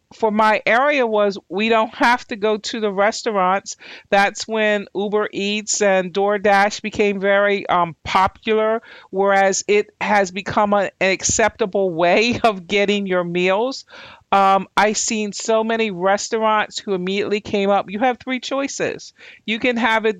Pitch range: 195-225 Hz